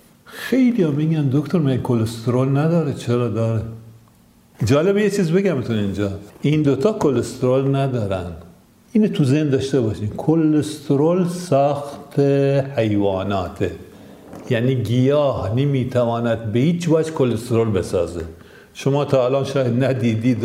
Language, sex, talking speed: Persian, male, 115 wpm